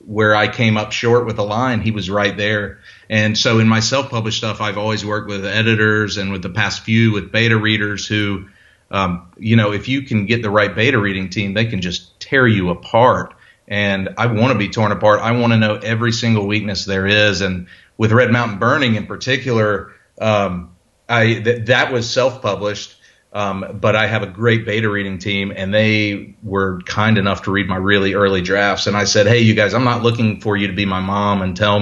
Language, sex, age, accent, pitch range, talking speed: English, male, 40-59, American, 100-110 Hz, 220 wpm